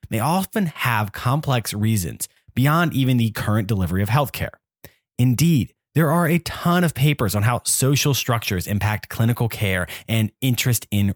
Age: 30-49